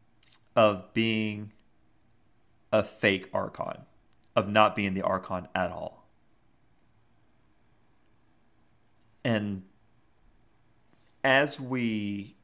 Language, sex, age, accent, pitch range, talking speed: English, male, 30-49, American, 100-115 Hz, 70 wpm